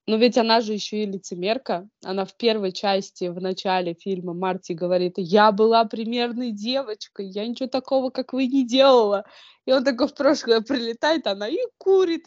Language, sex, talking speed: Russian, female, 175 wpm